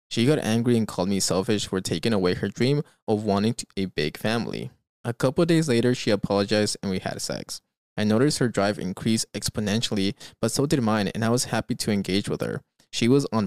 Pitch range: 105-125 Hz